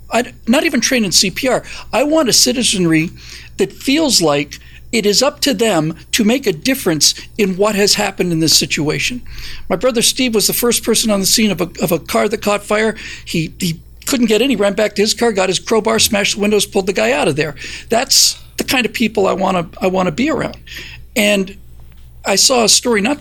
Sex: male